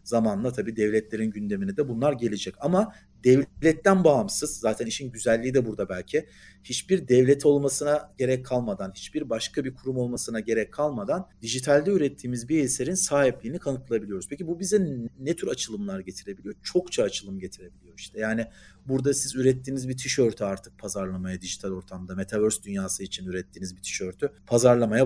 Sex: male